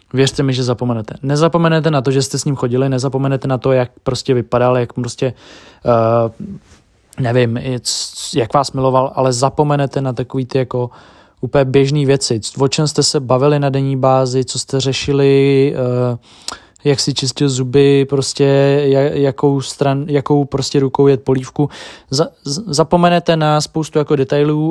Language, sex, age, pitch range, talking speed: Czech, male, 20-39, 130-140 Hz, 155 wpm